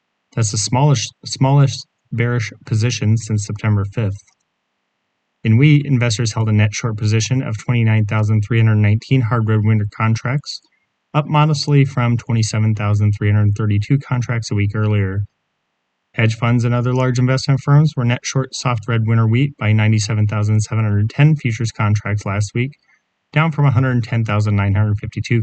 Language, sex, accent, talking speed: English, male, American, 125 wpm